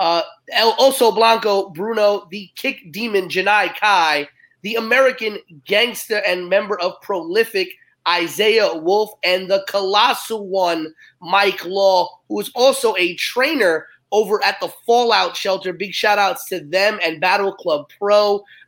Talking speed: 145 wpm